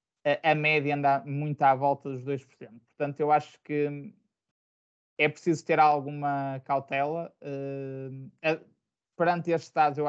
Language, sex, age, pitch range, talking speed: Portuguese, male, 20-39, 135-150 Hz, 125 wpm